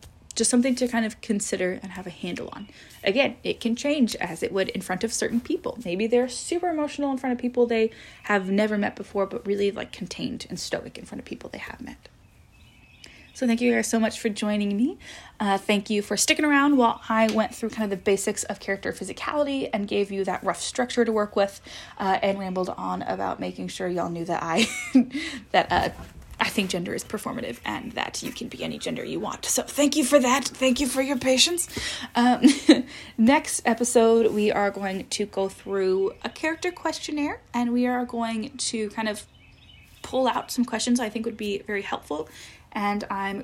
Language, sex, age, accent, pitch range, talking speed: English, female, 20-39, American, 200-260 Hz, 210 wpm